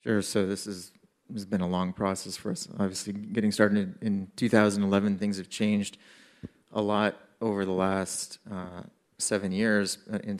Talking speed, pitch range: 155 wpm, 95-105 Hz